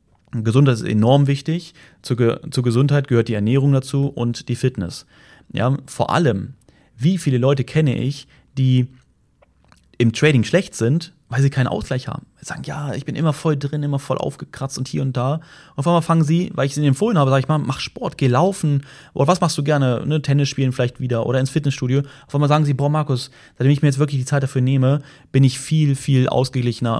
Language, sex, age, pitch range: German, male, 30-49, 110-140 Hz